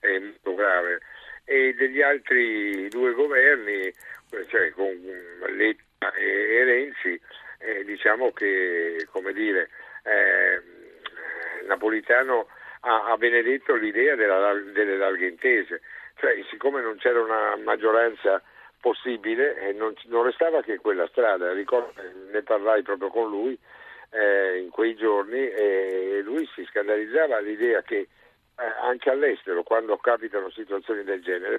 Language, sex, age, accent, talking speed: Italian, male, 50-69, native, 125 wpm